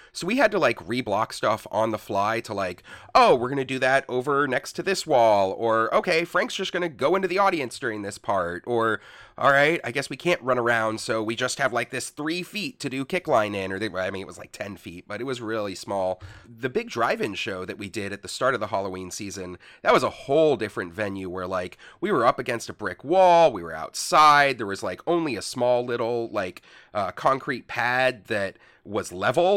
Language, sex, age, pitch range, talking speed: English, male, 30-49, 110-165 Hz, 235 wpm